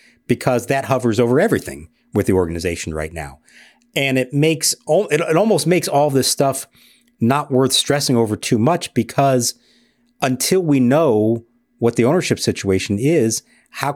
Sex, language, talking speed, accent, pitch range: male, English, 155 wpm, American, 105-145 Hz